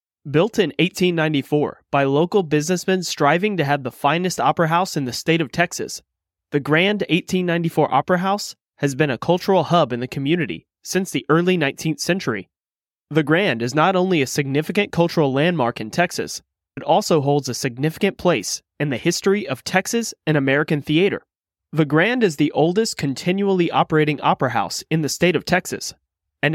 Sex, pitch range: male, 140-175 Hz